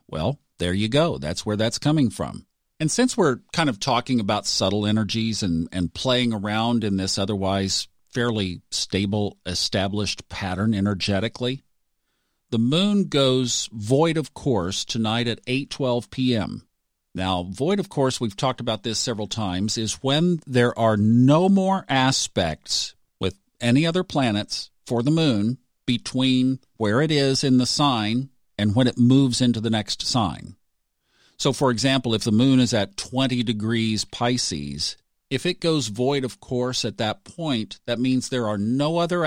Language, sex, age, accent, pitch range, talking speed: English, male, 50-69, American, 105-130 Hz, 160 wpm